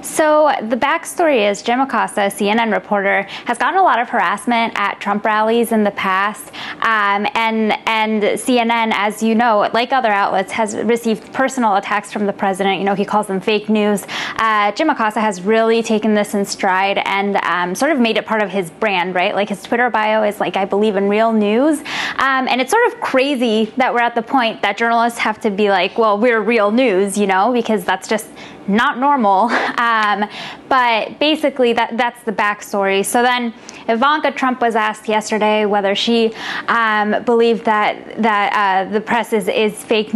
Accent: American